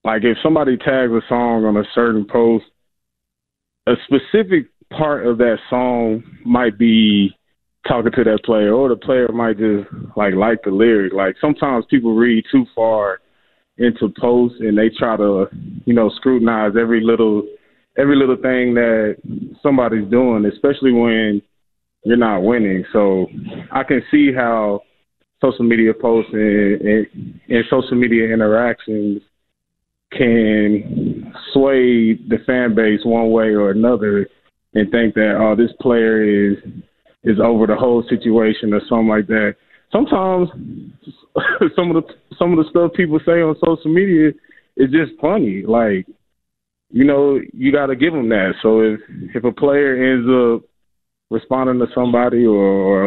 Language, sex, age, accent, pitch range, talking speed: English, male, 20-39, American, 105-130 Hz, 155 wpm